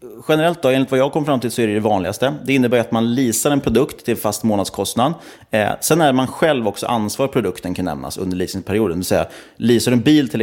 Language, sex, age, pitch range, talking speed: Swedish, male, 30-49, 95-120 Hz, 230 wpm